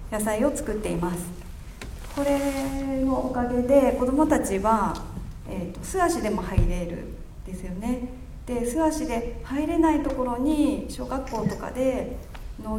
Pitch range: 195-275 Hz